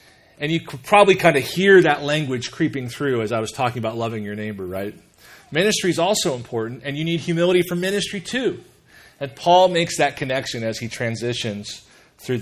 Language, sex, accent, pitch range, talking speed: English, male, American, 115-155 Hz, 195 wpm